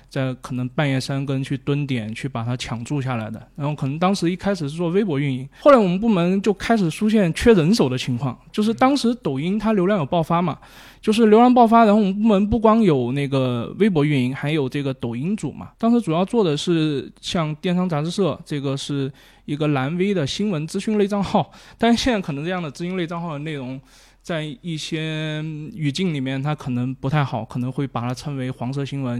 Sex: male